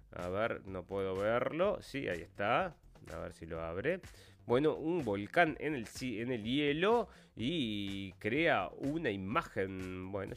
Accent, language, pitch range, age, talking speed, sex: Argentinian, Spanish, 110-180 Hz, 30-49, 155 wpm, male